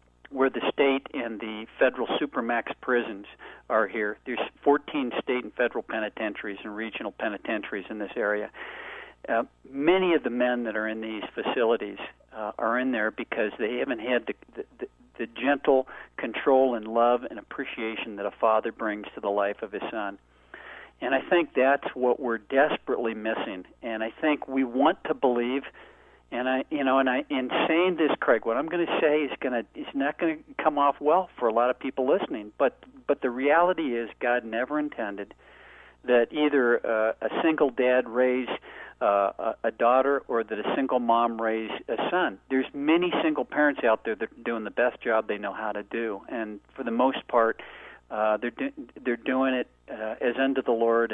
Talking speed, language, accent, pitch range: 195 wpm, English, American, 110-140 Hz